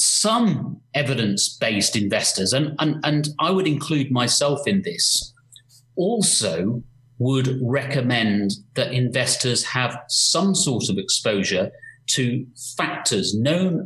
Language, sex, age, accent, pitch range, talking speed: English, male, 40-59, British, 105-130 Hz, 110 wpm